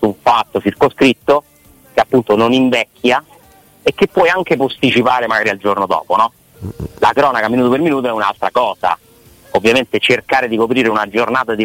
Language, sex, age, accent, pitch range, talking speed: Italian, male, 30-49, native, 105-130 Hz, 165 wpm